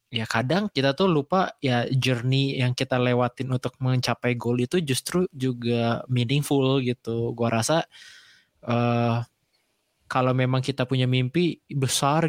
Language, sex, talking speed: Indonesian, male, 135 wpm